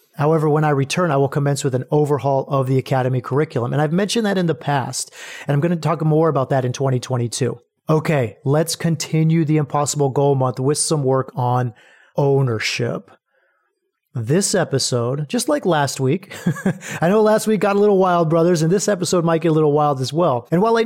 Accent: American